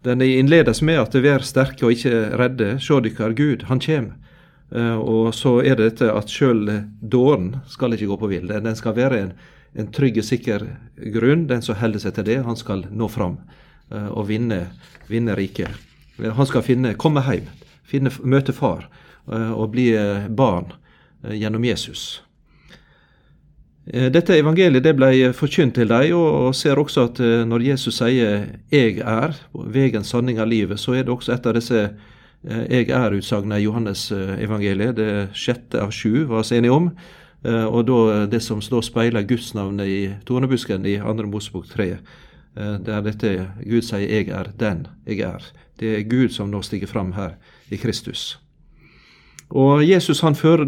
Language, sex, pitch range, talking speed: English, male, 105-130 Hz, 170 wpm